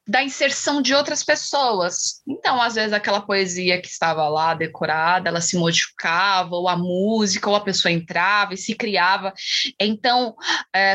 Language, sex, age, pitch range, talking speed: Portuguese, female, 20-39, 195-250 Hz, 160 wpm